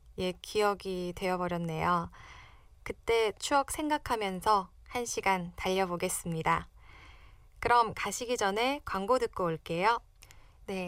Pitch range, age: 180-250 Hz, 20-39